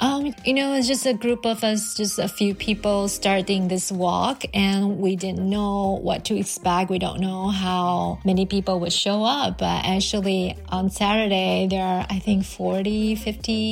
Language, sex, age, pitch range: Chinese, female, 30-49, 185-205 Hz